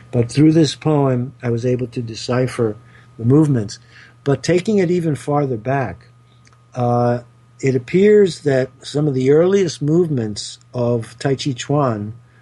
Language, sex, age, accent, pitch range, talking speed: English, male, 50-69, American, 120-140 Hz, 145 wpm